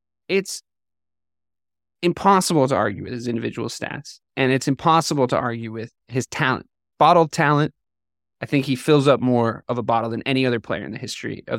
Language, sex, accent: English, male, American